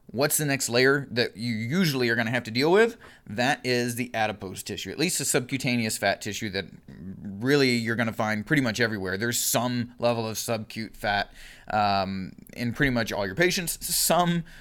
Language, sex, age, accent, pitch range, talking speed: English, male, 30-49, American, 110-135 Hz, 195 wpm